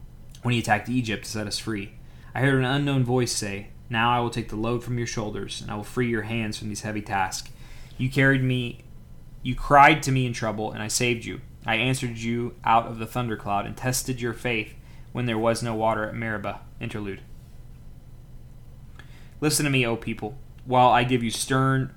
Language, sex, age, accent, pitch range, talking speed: English, male, 20-39, American, 105-125 Hz, 205 wpm